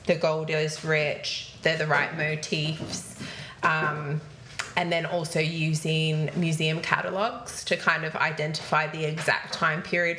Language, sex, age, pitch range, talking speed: English, female, 20-39, 150-170 Hz, 135 wpm